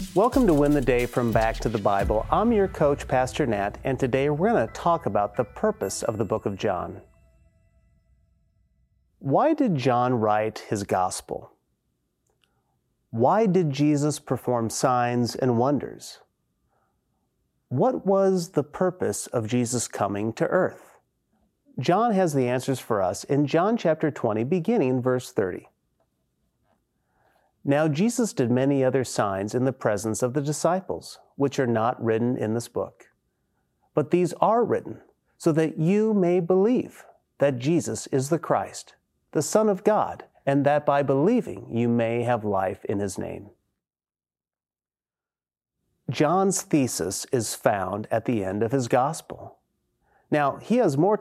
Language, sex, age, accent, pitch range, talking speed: English, male, 30-49, American, 120-170 Hz, 150 wpm